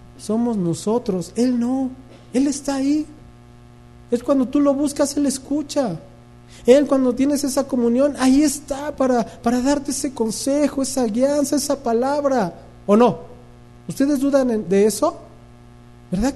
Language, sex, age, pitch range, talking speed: English, male, 40-59, 165-270 Hz, 135 wpm